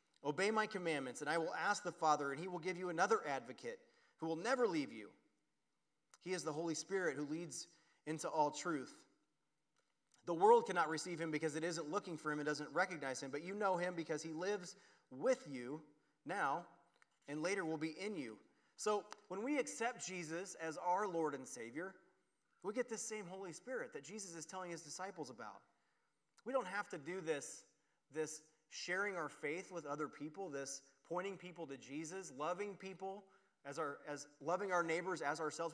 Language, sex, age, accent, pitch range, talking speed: English, male, 30-49, American, 160-215 Hz, 190 wpm